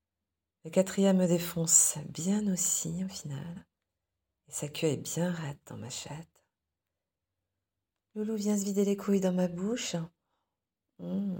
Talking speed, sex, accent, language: 140 wpm, female, French, French